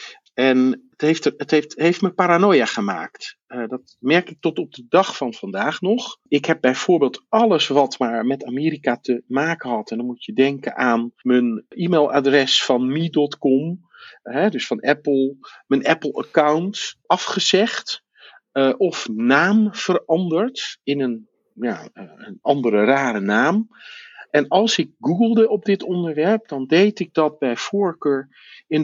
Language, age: Dutch, 50-69